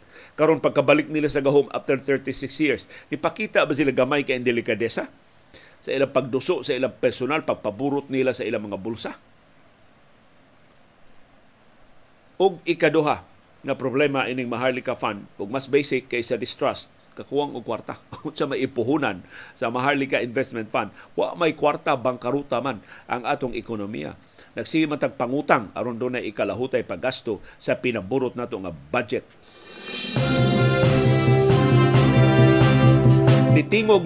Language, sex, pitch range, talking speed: Filipino, male, 125-155 Hz, 120 wpm